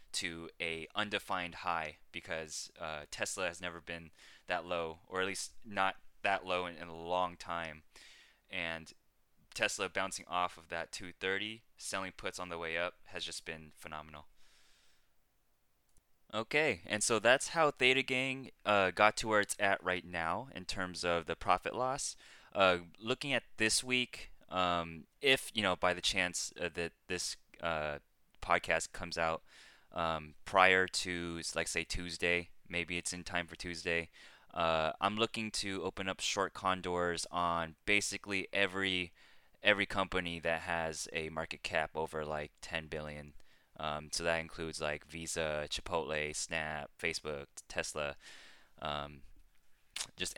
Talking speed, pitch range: 155 wpm, 80-95 Hz